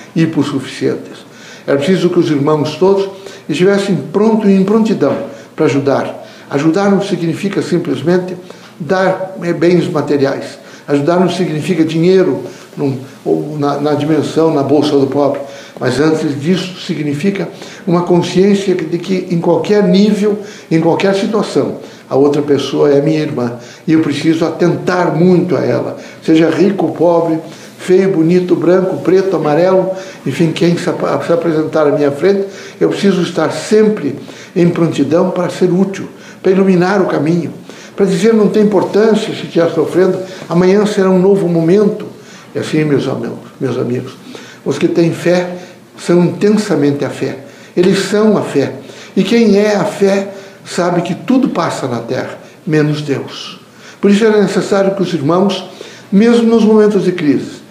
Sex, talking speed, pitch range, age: male, 155 wpm, 155-195 Hz, 60-79